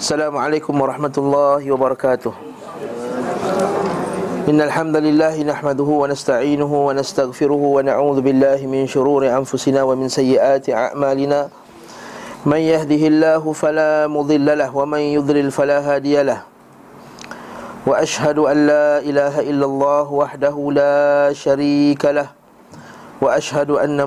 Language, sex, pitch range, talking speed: Malay, male, 135-145 Hz, 100 wpm